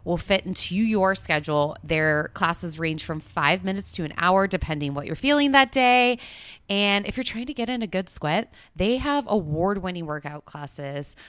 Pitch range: 155-220 Hz